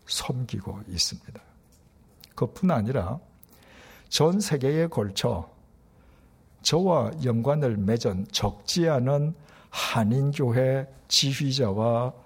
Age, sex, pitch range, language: 60-79, male, 105-165 Hz, Korean